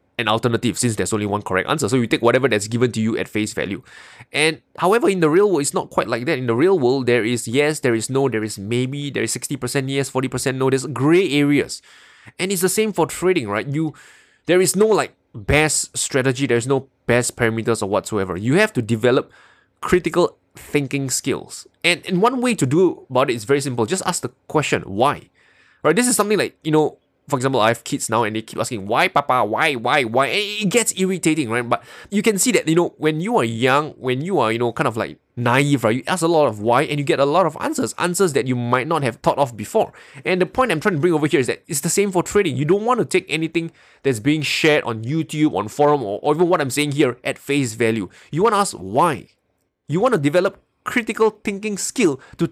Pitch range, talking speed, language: 120-175 Hz, 245 wpm, English